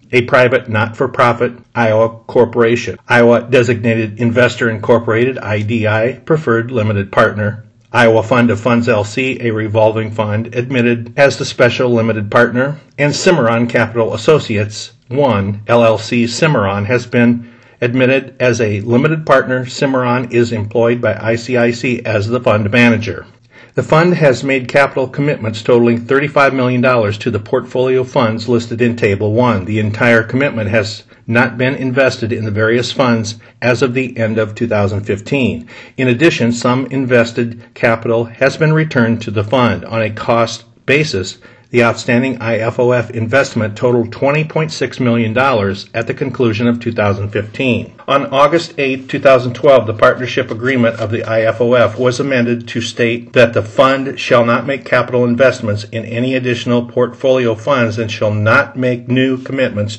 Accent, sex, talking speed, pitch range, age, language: American, male, 145 wpm, 115-130 Hz, 50-69, English